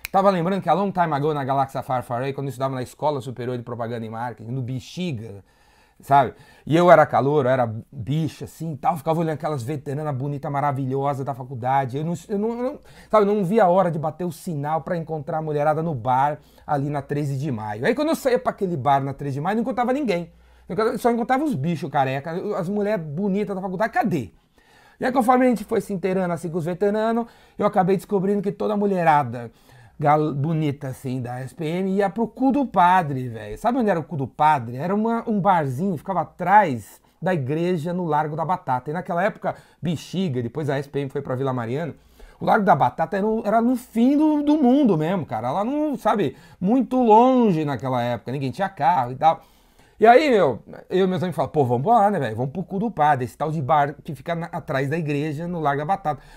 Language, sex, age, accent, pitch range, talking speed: Portuguese, male, 30-49, Brazilian, 140-200 Hz, 220 wpm